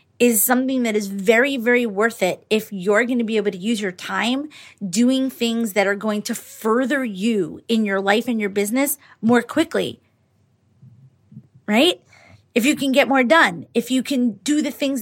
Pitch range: 200-250 Hz